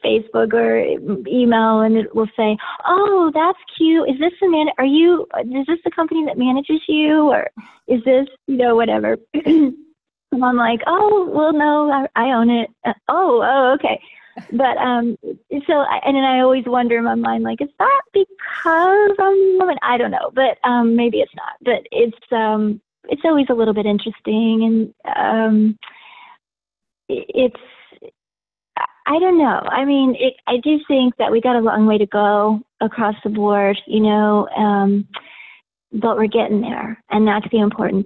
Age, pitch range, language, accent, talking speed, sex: 30-49, 210-295 Hz, English, American, 175 wpm, female